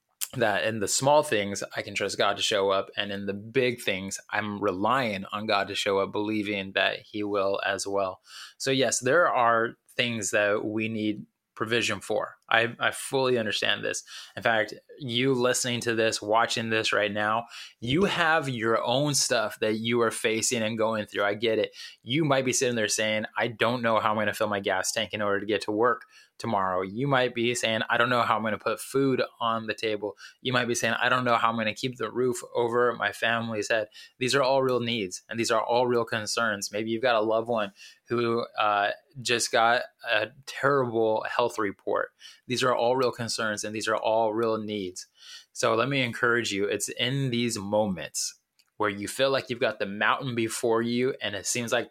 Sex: male